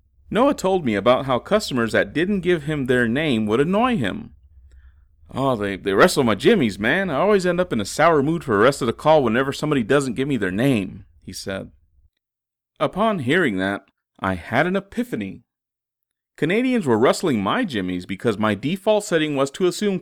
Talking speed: 190 wpm